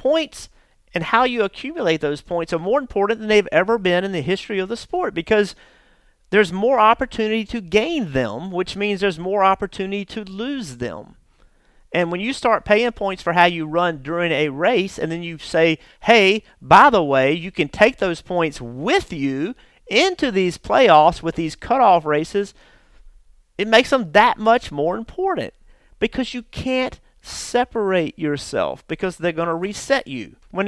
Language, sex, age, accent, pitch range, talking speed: English, male, 40-59, American, 170-220 Hz, 170 wpm